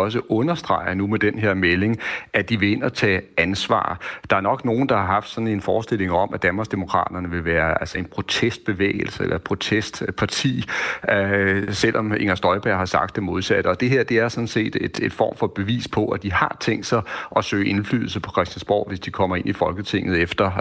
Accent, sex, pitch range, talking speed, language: native, male, 95-115 Hz, 210 wpm, Danish